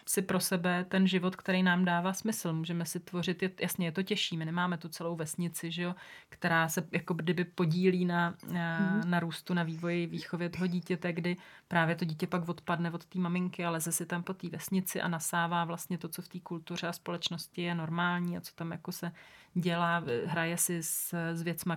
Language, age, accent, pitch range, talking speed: Czech, 30-49, native, 165-185 Hz, 210 wpm